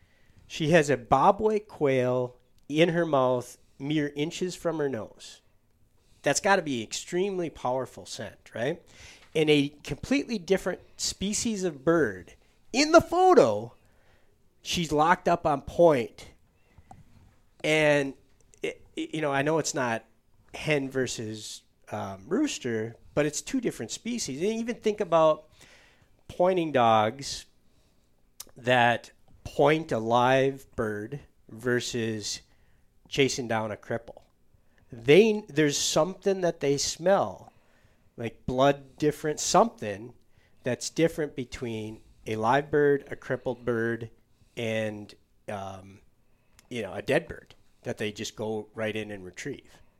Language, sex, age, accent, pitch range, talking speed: English, male, 40-59, American, 110-160 Hz, 125 wpm